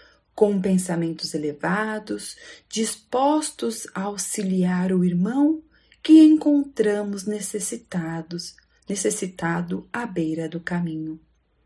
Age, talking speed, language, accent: 40-59, 80 wpm, Portuguese, Brazilian